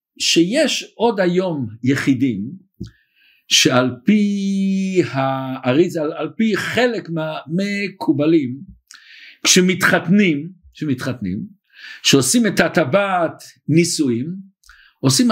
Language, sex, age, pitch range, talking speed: Hebrew, male, 50-69, 145-205 Hz, 65 wpm